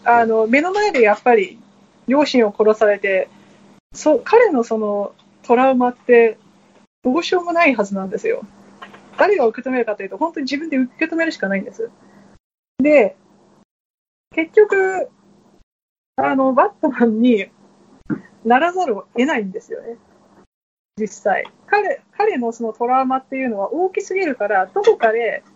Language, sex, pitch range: Japanese, female, 225-340 Hz